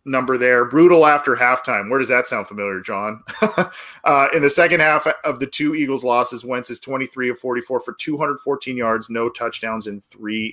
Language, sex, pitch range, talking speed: English, male, 110-145 Hz, 190 wpm